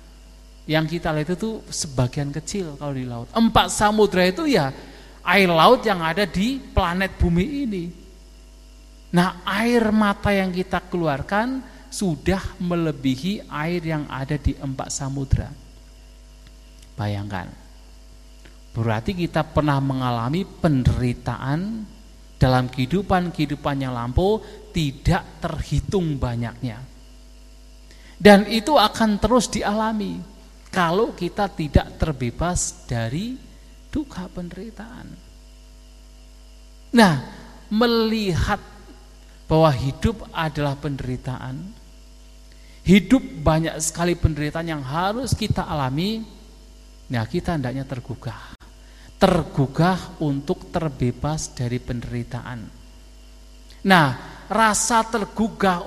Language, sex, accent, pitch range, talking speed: English, male, Indonesian, 130-200 Hz, 95 wpm